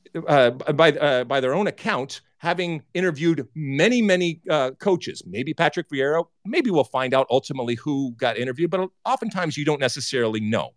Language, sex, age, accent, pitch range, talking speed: English, male, 40-59, American, 125-170 Hz, 165 wpm